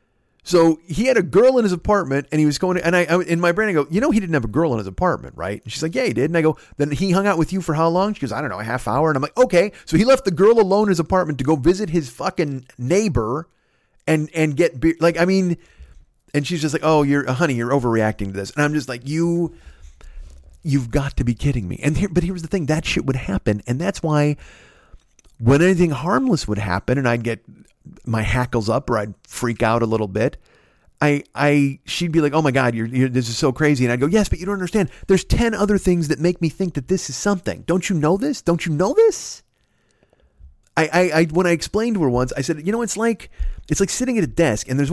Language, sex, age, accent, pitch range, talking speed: English, male, 40-59, American, 125-180 Hz, 270 wpm